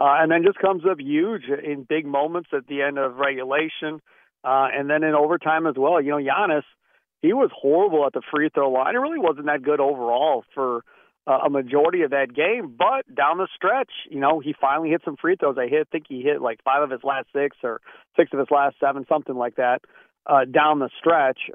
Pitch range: 125-155 Hz